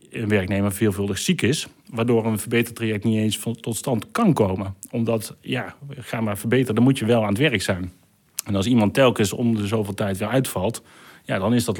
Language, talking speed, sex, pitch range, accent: Dutch, 210 wpm, male, 100-120 Hz, Dutch